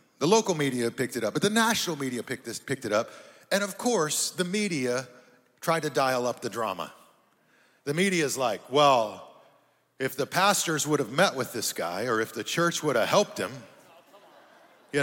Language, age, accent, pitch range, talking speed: English, 40-59, American, 145-220 Hz, 195 wpm